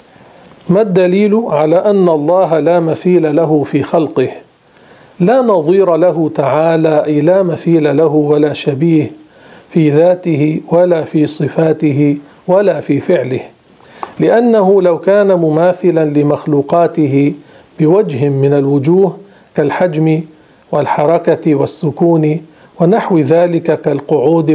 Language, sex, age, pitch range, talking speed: Arabic, male, 50-69, 150-175 Hz, 100 wpm